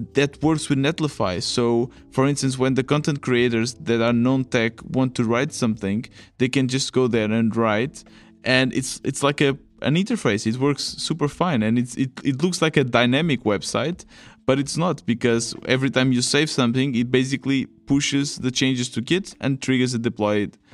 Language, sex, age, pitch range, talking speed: English, male, 20-39, 110-130 Hz, 190 wpm